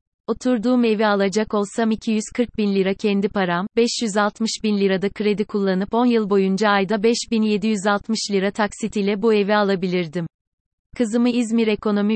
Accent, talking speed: native, 135 wpm